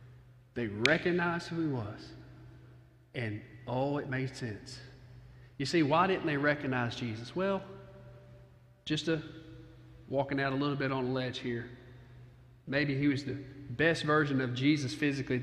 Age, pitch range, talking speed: 40-59, 125-160 Hz, 150 wpm